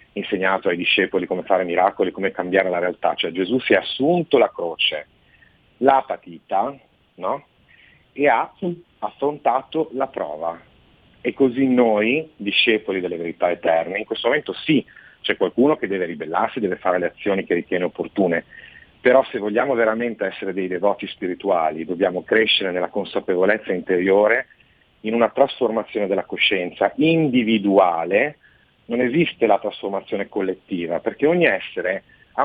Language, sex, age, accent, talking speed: Italian, male, 40-59, native, 140 wpm